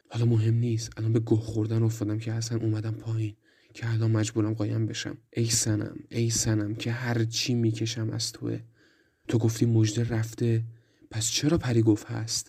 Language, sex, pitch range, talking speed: Persian, male, 110-120 Hz, 175 wpm